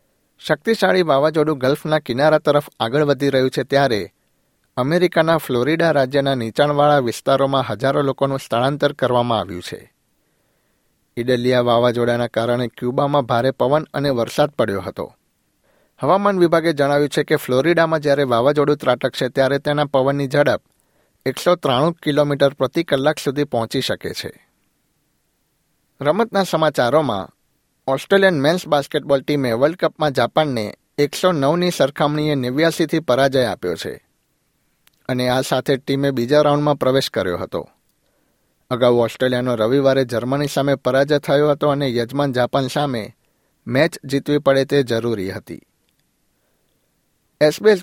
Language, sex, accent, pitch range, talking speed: Gujarati, male, native, 125-150 Hz, 120 wpm